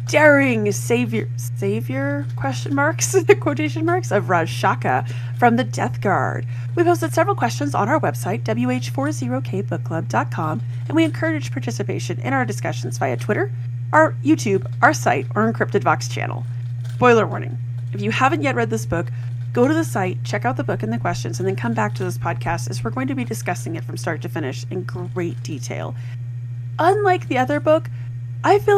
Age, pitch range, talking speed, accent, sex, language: 30-49, 120-125 Hz, 180 wpm, American, female, English